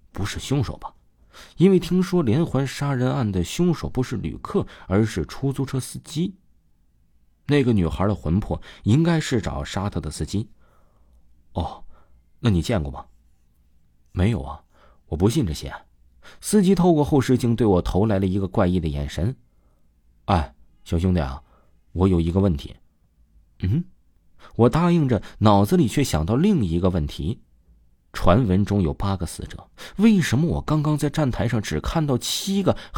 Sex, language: male, Chinese